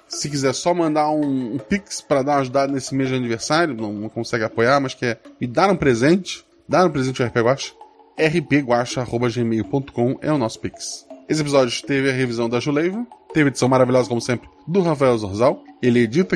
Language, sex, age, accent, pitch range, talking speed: Portuguese, male, 20-39, Brazilian, 115-150 Hz, 195 wpm